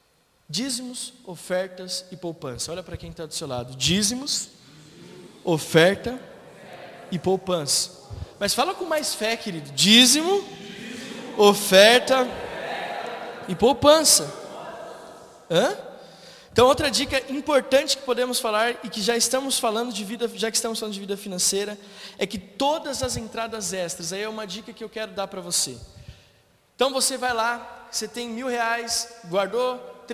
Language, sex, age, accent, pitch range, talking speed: Portuguese, male, 20-39, Brazilian, 200-245 Hz, 145 wpm